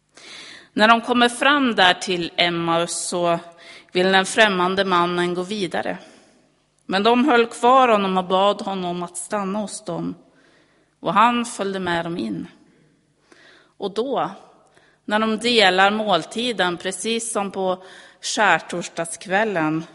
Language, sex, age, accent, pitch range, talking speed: Swedish, female, 30-49, native, 175-225 Hz, 125 wpm